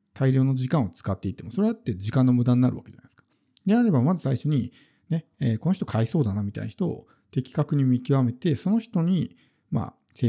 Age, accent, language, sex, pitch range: 50-69, native, Japanese, male, 115-155 Hz